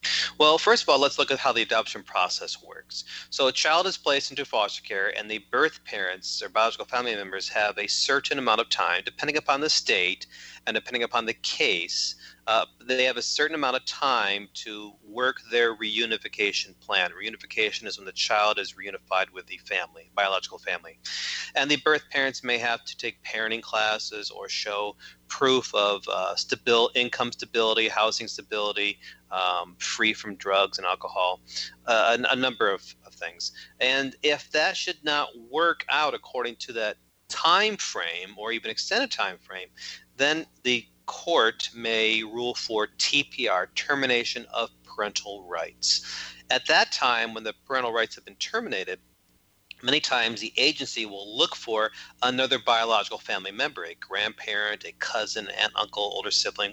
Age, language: 30-49, English